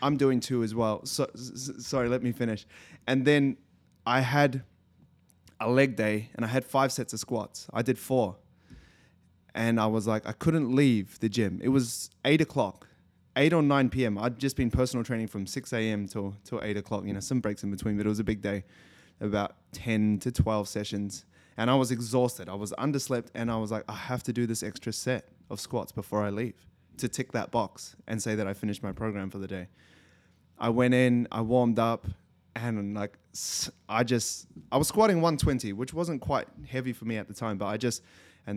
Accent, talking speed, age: Australian, 220 wpm, 20-39